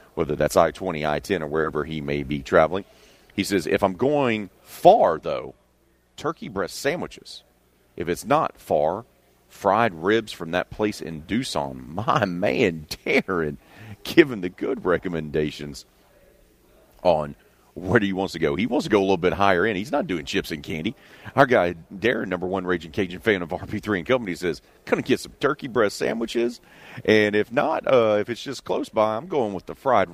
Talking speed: 190 wpm